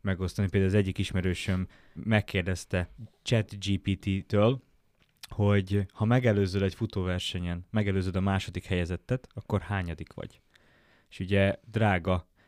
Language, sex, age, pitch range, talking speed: Hungarian, male, 20-39, 95-115 Hz, 105 wpm